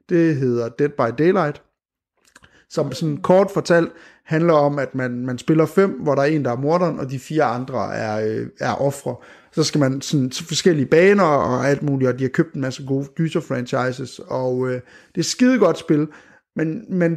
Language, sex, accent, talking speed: Danish, male, native, 205 wpm